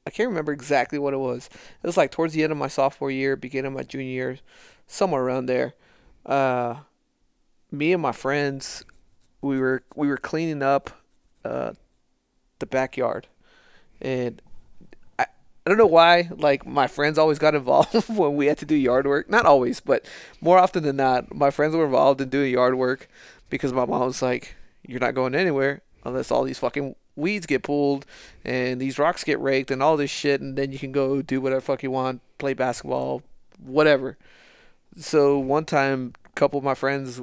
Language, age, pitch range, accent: English, 20-39, 130-145 Hz, American